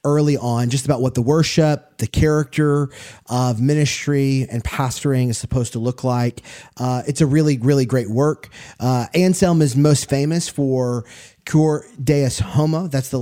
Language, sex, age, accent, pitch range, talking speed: English, male, 30-49, American, 120-145 Hz, 165 wpm